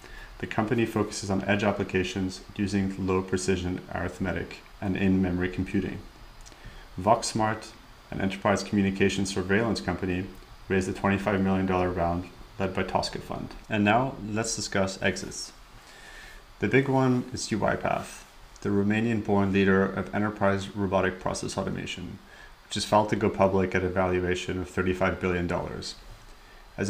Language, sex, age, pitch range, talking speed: English, male, 30-49, 95-105 Hz, 135 wpm